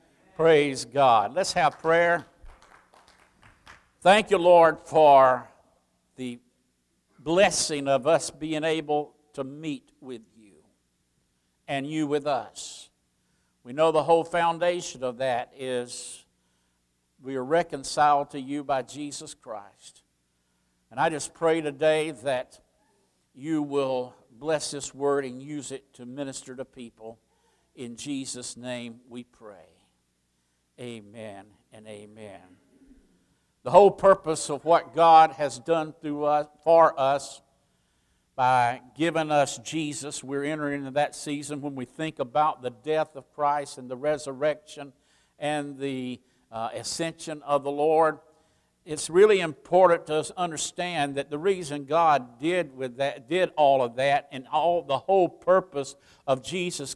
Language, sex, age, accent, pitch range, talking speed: English, male, 60-79, American, 125-160 Hz, 135 wpm